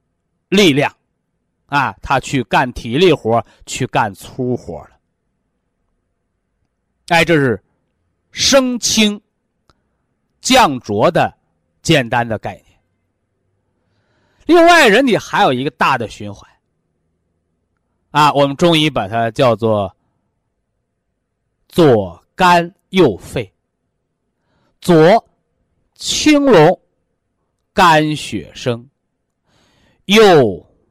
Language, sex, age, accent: Chinese, male, 50-69, native